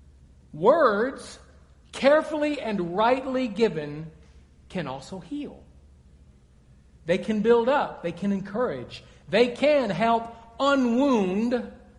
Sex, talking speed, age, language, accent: male, 95 wpm, 50-69, English, American